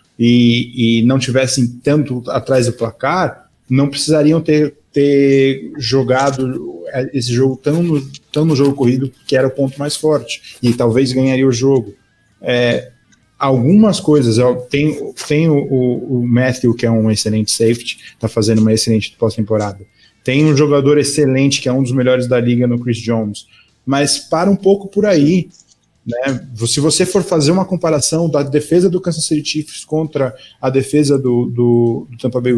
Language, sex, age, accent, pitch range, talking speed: English, male, 20-39, Brazilian, 120-155 Hz, 160 wpm